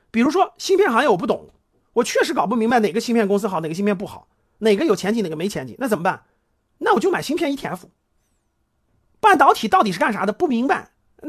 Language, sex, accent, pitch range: Chinese, male, native, 185-265 Hz